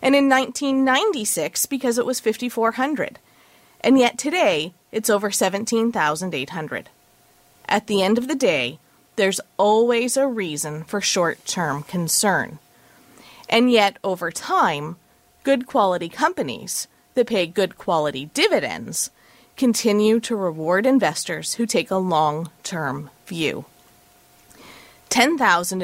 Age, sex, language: 30-49, female, English